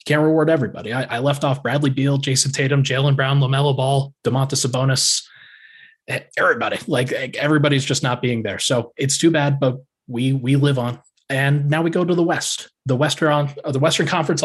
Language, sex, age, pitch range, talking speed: English, male, 20-39, 115-140 Hz, 185 wpm